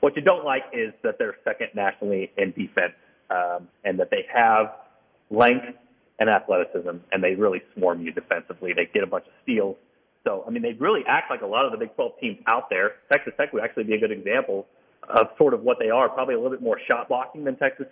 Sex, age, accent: male, 40-59, American